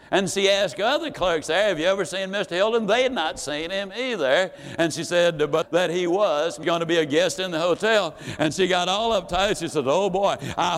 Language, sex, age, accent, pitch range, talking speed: English, male, 60-79, American, 165-225 Hz, 245 wpm